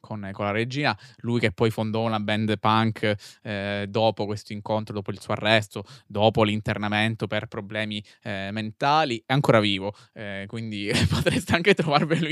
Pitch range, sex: 105-120 Hz, male